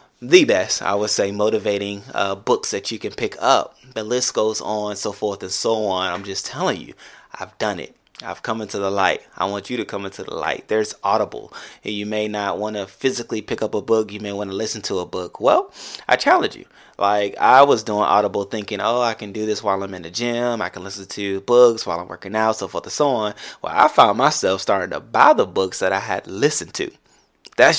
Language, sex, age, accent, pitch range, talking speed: English, male, 20-39, American, 100-110 Hz, 240 wpm